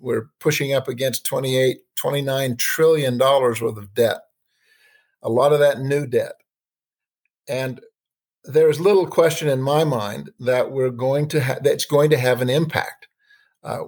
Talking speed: 155 wpm